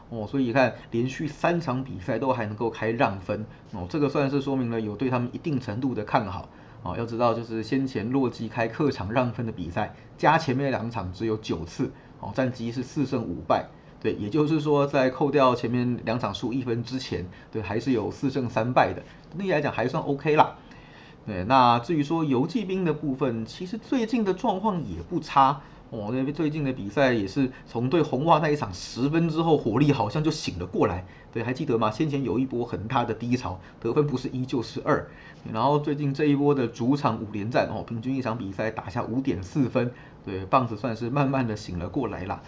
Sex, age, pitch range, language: male, 30-49, 115-145 Hz, Chinese